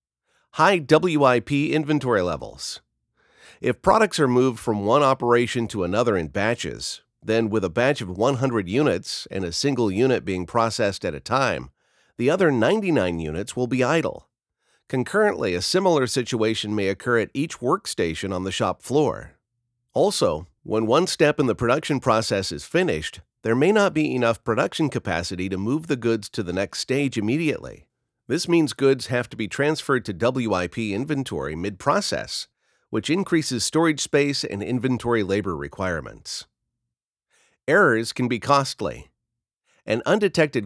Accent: American